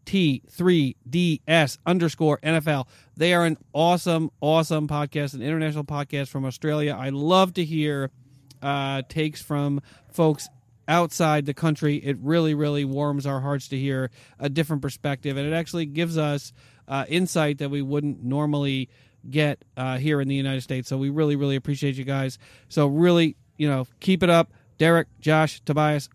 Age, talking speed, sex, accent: 40-59, 170 wpm, male, American